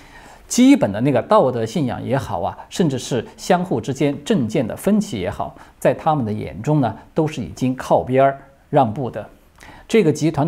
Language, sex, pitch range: Chinese, male, 115-170 Hz